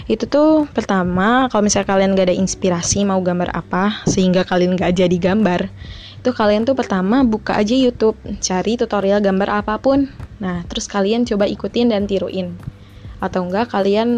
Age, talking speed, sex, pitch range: 20-39, 160 wpm, female, 180-210 Hz